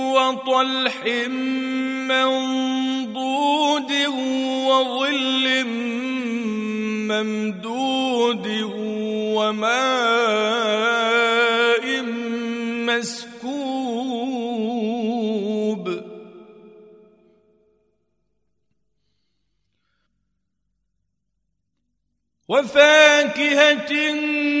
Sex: male